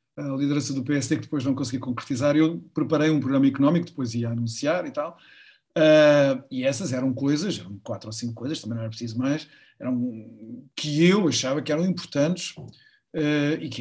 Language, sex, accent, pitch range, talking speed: Portuguese, male, Portuguese, 120-155 Hz, 190 wpm